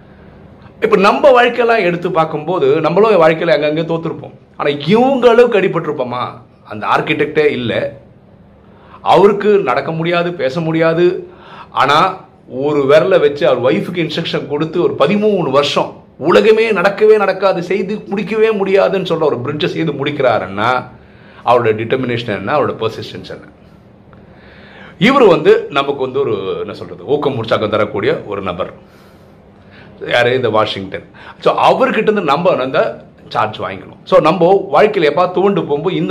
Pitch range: 140-210 Hz